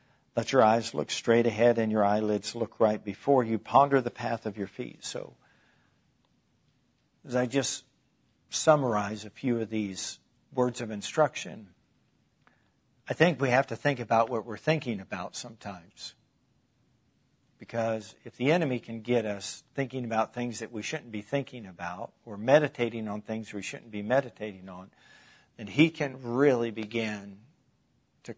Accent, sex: American, male